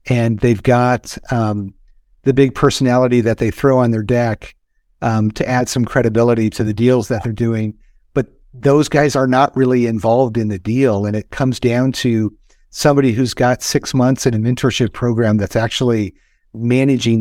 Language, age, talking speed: English, 50-69, 180 wpm